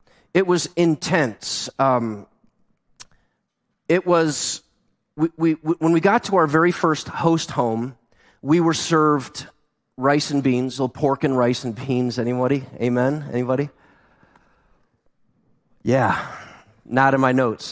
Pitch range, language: 115-145 Hz, English